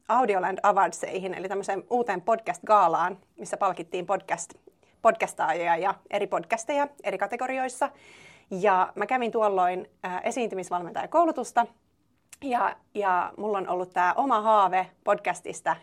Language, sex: Finnish, female